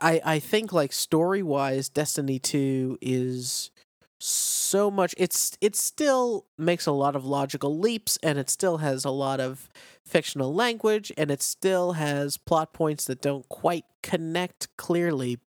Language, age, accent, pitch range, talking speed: English, 40-59, American, 130-170 Hz, 150 wpm